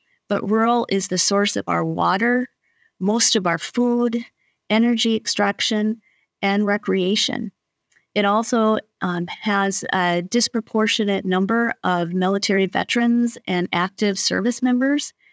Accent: American